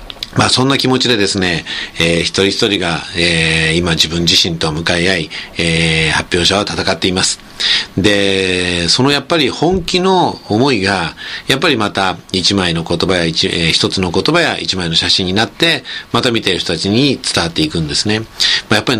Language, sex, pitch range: Japanese, male, 90-110 Hz